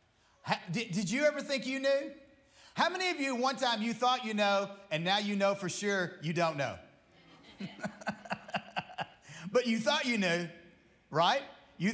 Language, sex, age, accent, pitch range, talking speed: English, male, 40-59, American, 170-245 Hz, 165 wpm